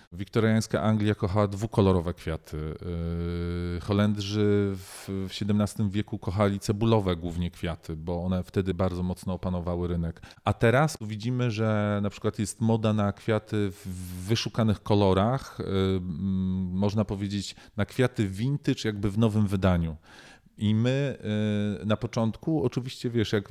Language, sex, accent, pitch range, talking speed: Polish, male, native, 95-115 Hz, 125 wpm